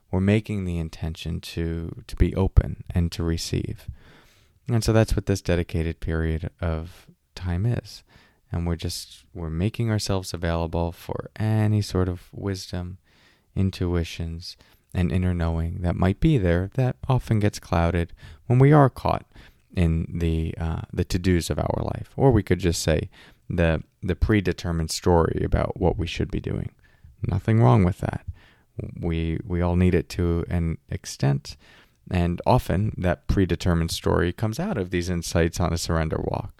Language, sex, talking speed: English, male, 160 wpm